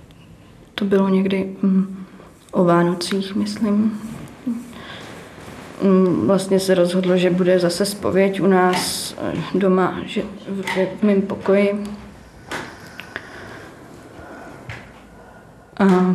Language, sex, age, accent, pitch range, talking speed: Czech, female, 20-39, native, 180-210 Hz, 80 wpm